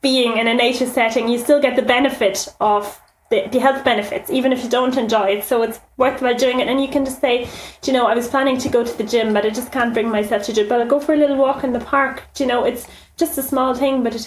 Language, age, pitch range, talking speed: English, 30-49, 220-255 Hz, 300 wpm